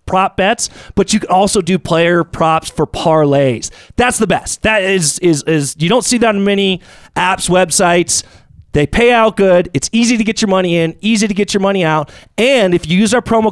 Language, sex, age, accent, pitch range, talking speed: English, male, 30-49, American, 140-200 Hz, 215 wpm